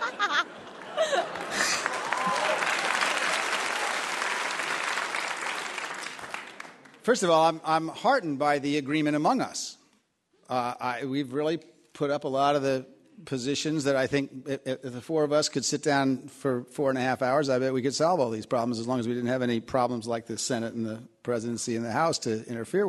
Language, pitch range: English, 130-155 Hz